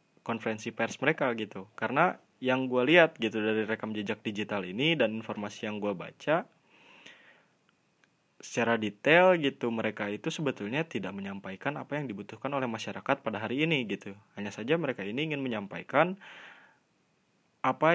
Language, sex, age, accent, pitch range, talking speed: Indonesian, male, 20-39, native, 105-140 Hz, 145 wpm